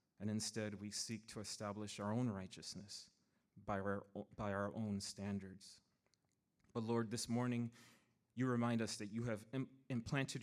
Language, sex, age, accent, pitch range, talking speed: English, male, 30-49, American, 100-120 Hz, 150 wpm